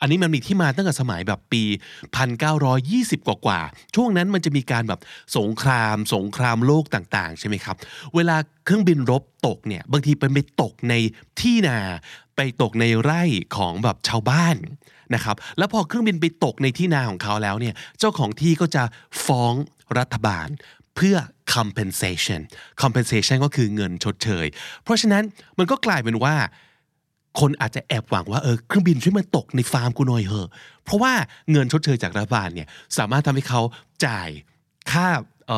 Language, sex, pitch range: Thai, male, 110-155 Hz